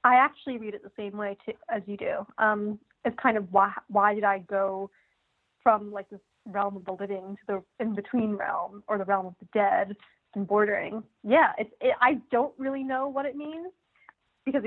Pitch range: 205-250 Hz